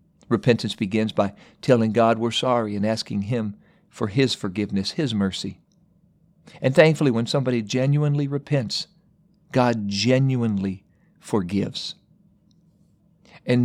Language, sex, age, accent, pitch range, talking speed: English, male, 50-69, American, 110-150 Hz, 110 wpm